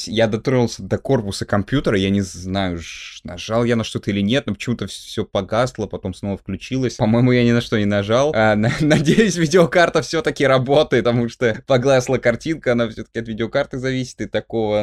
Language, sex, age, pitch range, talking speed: Russian, male, 20-39, 105-130 Hz, 180 wpm